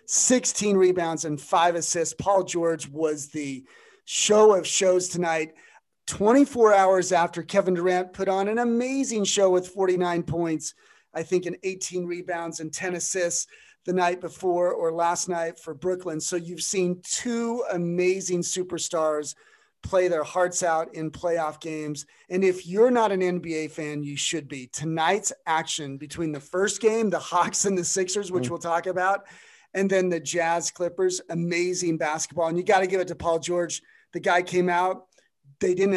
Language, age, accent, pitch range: English, 40-59, American, 165-185 Hz